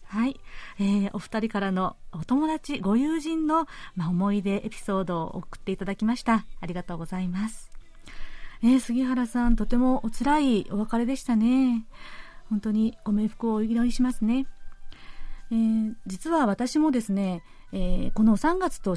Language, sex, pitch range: Japanese, female, 200-265 Hz